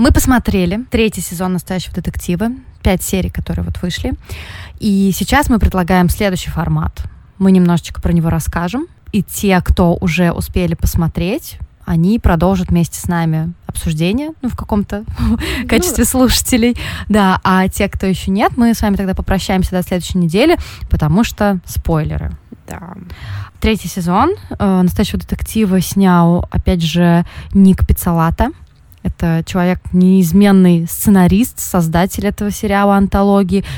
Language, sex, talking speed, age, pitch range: Russian, female, 130 wpm, 20-39, 175-210 Hz